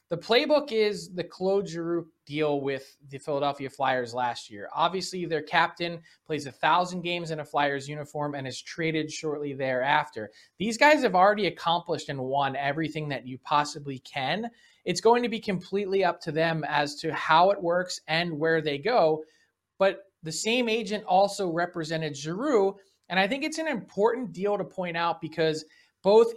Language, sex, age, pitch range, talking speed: English, male, 20-39, 145-185 Hz, 175 wpm